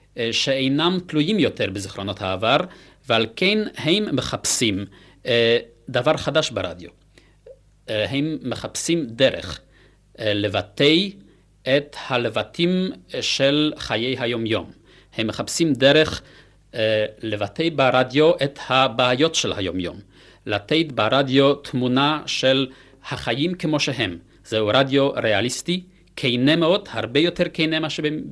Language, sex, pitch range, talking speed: Hebrew, male, 110-150 Hz, 95 wpm